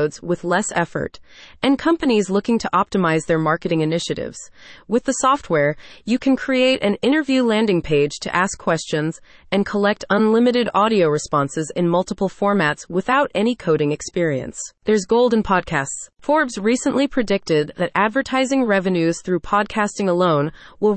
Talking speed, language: 140 wpm, English